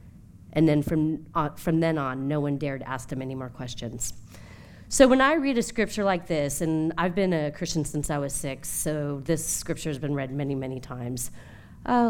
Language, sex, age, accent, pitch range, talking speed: English, female, 40-59, American, 120-175 Hz, 210 wpm